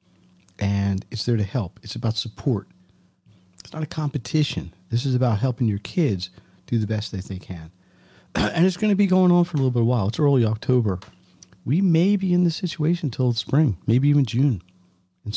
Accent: American